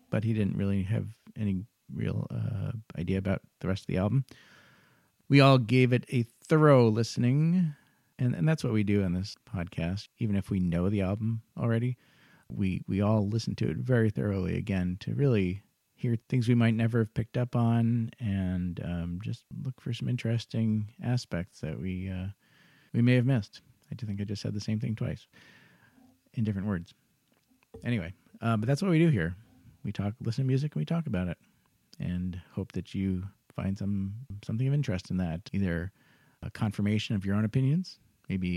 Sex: male